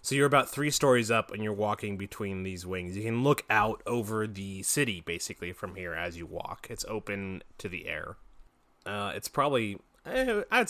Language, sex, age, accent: English, male, 20-39, American